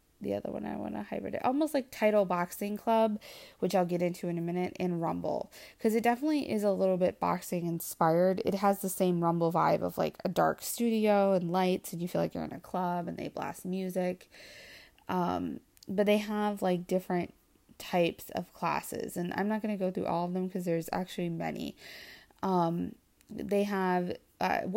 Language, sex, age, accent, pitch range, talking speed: English, female, 20-39, American, 175-200 Hz, 200 wpm